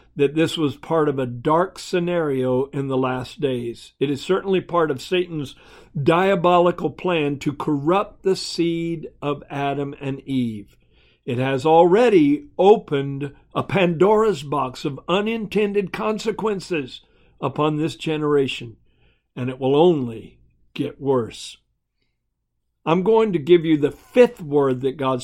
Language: English